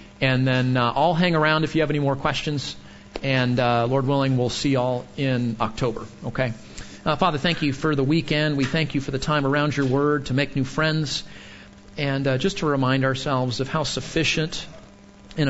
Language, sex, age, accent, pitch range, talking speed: English, male, 40-59, American, 125-150 Hz, 205 wpm